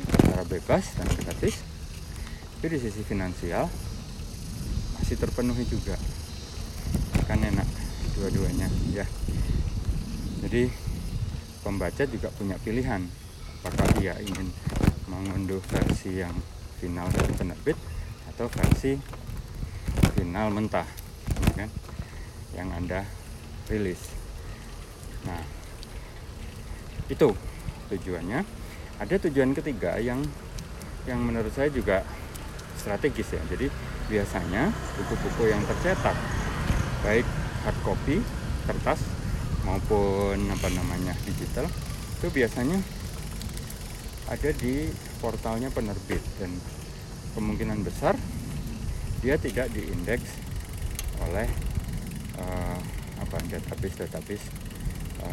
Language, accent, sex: Indonesian, native, male